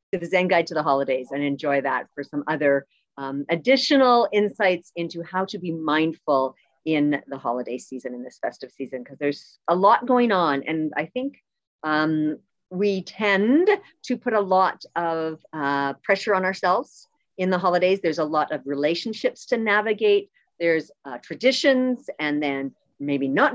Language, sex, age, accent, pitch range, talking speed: English, female, 40-59, American, 155-240 Hz, 165 wpm